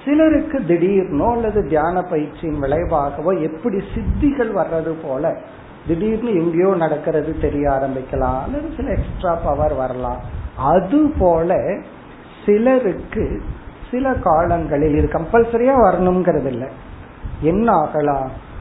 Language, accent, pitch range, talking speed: Tamil, native, 150-225 Hz, 85 wpm